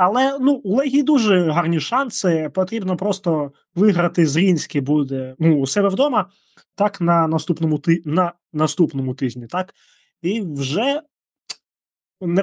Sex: male